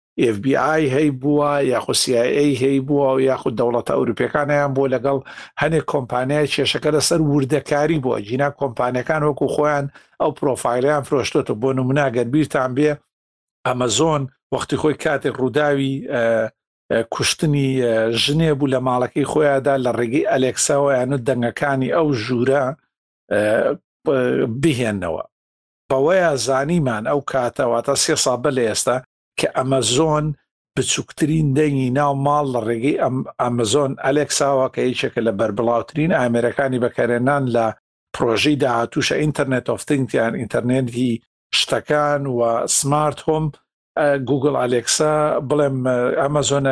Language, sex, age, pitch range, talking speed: Arabic, male, 60-79, 125-150 Hz, 120 wpm